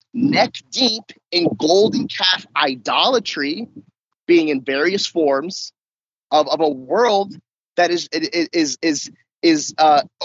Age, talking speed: 30-49, 115 wpm